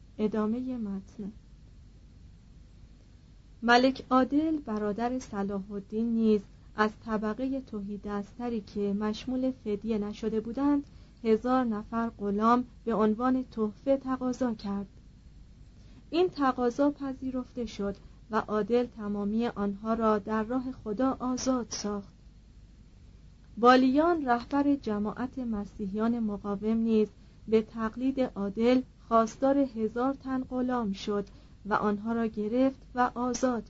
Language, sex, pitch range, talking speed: Persian, female, 210-255 Hz, 105 wpm